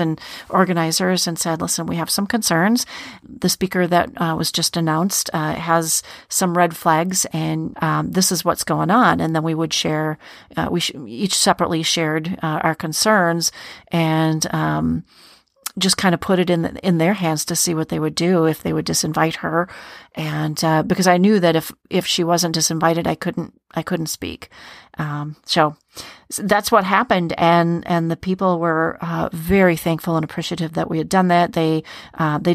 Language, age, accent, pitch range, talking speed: English, 40-59, American, 160-180 Hz, 190 wpm